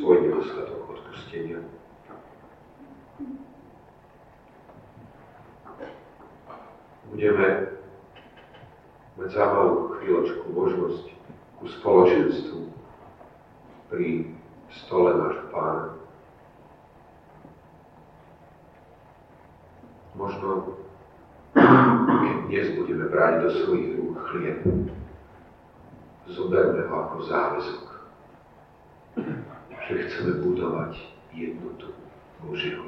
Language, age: Slovak, 50-69